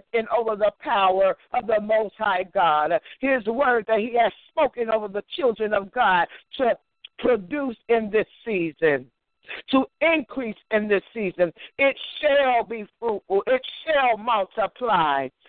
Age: 60-79